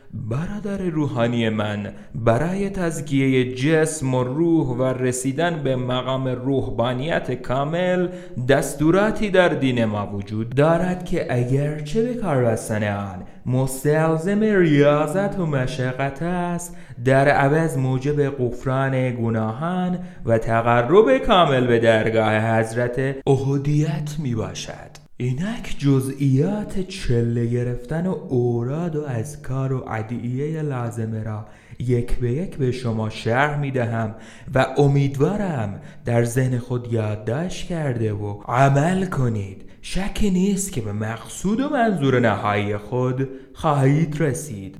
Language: Persian